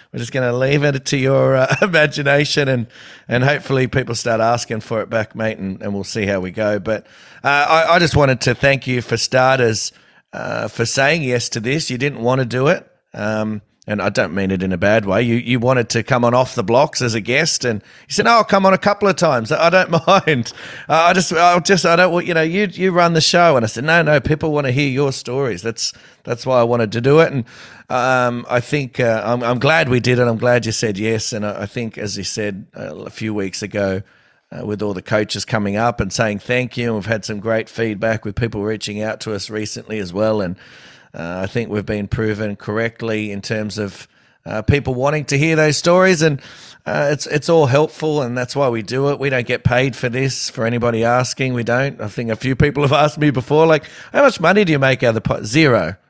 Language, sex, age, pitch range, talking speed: English, male, 30-49, 110-145 Hz, 250 wpm